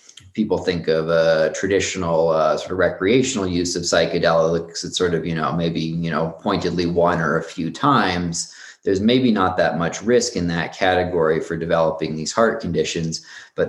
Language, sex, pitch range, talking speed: English, male, 80-90 Hz, 180 wpm